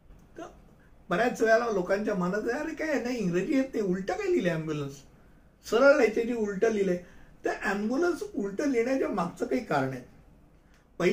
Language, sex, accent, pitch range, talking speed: Hindi, male, native, 180-240 Hz, 125 wpm